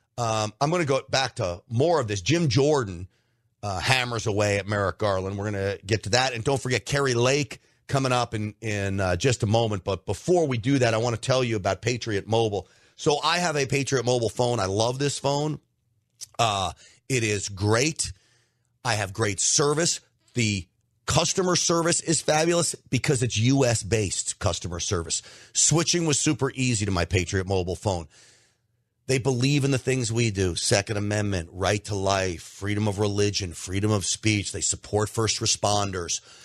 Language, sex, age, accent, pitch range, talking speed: English, male, 40-59, American, 105-150 Hz, 180 wpm